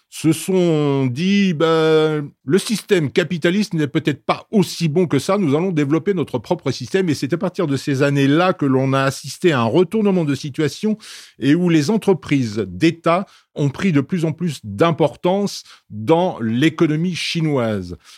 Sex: male